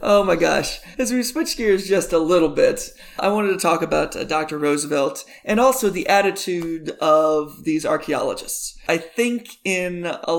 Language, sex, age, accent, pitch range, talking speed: English, male, 30-49, American, 155-200 Hz, 170 wpm